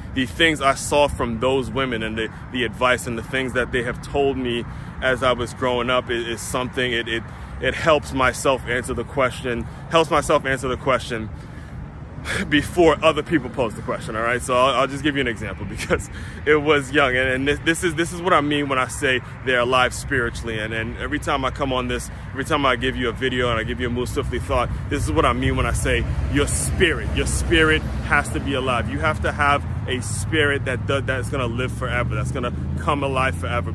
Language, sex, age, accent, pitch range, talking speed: English, male, 20-39, American, 115-135 Hz, 235 wpm